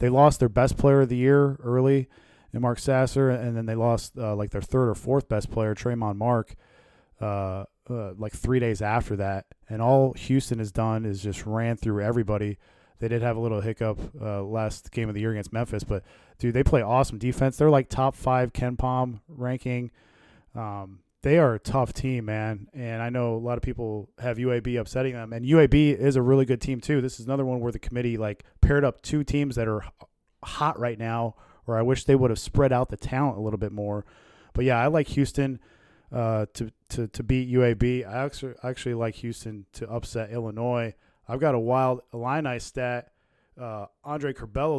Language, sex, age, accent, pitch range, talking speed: English, male, 20-39, American, 110-130 Hz, 210 wpm